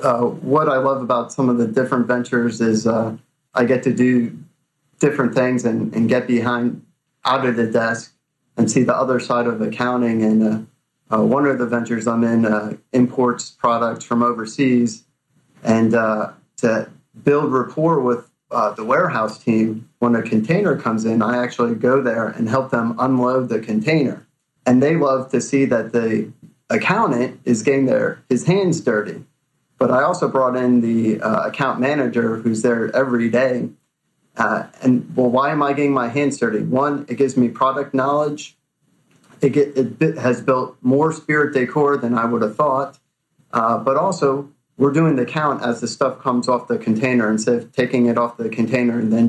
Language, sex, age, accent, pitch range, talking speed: English, male, 30-49, American, 115-140 Hz, 185 wpm